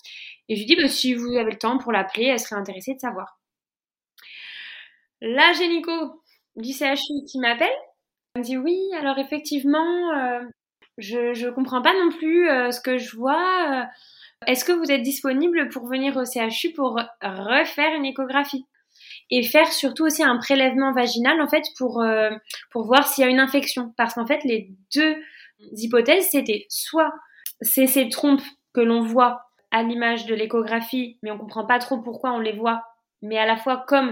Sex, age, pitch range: female, 20-39, 225-280 Hz